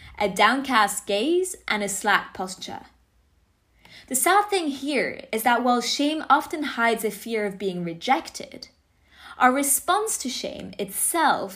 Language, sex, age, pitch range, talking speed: English, female, 20-39, 195-265 Hz, 140 wpm